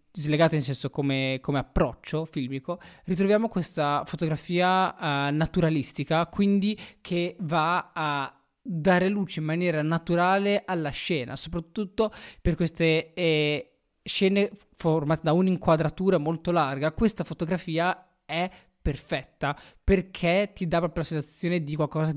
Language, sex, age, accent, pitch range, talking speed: Italian, male, 20-39, native, 150-185 Hz, 120 wpm